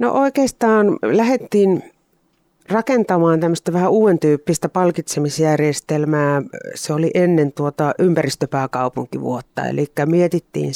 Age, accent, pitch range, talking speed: 40-59, native, 145-180 Hz, 90 wpm